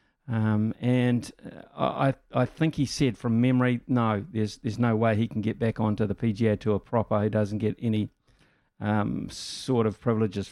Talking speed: 175 wpm